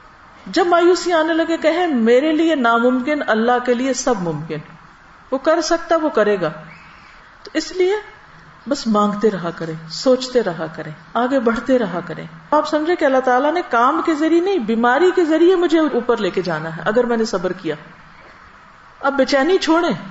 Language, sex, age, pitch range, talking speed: Urdu, female, 50-69, 195-310 Hz, 180 wpm